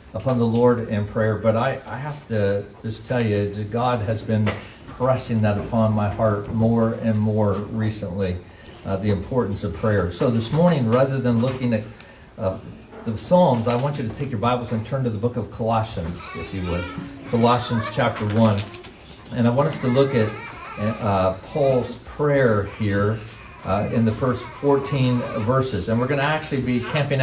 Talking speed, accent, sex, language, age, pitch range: 185 wpm, American, male, English, 50-69, 105-130 Hz